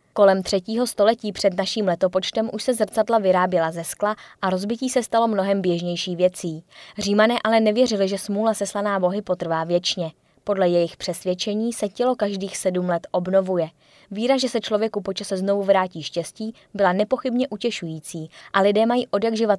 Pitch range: 180-220 Hz